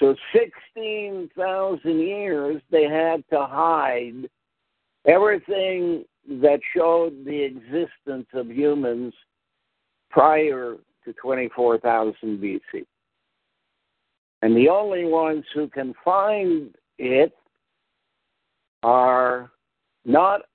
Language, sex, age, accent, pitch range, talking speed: English, male, 60-79, American, 130-175 Hz, 80 wpm